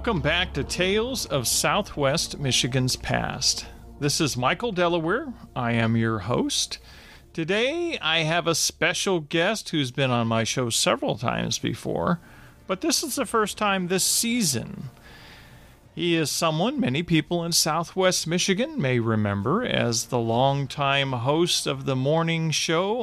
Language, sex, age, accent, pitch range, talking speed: English, male, 40-59, American, 135-190 Hz, 145 wpm